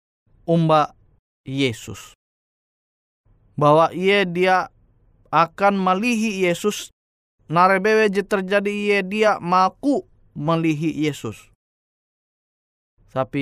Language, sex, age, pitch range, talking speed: Indonesian, male, 20-39, 110-170 Hz, 65 wpm